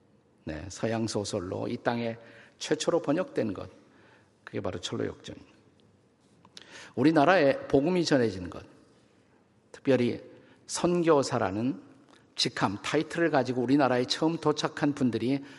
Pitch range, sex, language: 115-150 Hz, male, Korean